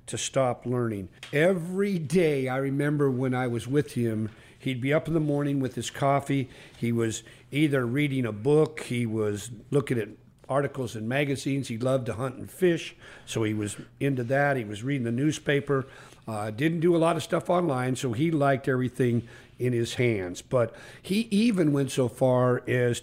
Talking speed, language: 190 wpm, English